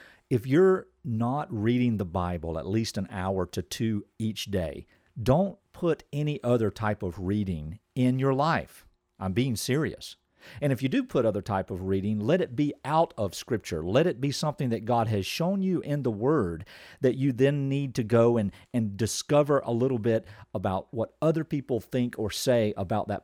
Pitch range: 105-140 Hz